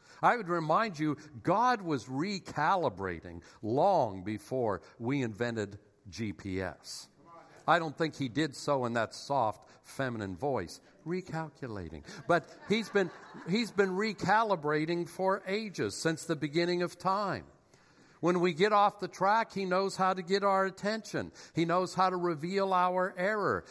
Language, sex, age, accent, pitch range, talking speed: English, male, 60-79, American, 140-190 Hz, 145 wpm